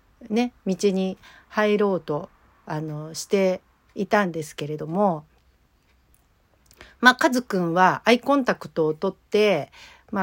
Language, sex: Japanese, female